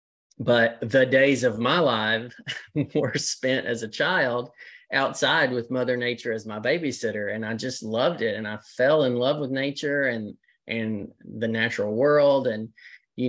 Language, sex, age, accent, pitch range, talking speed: English, male, 30-49, American, 110-130 Hz, 165 wpm